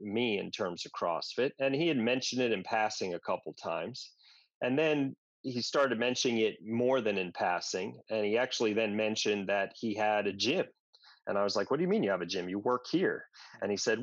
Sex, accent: male, American